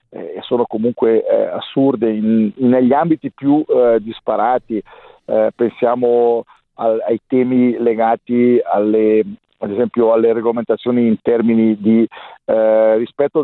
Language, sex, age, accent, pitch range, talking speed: Italian, male, 50-69, native, 115-135 Hz, 115 wpm